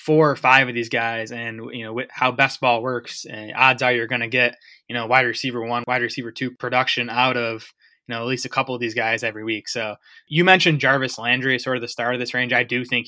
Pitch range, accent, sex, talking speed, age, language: 120-135 Hz, American, male, 260 wpm, 20-39, English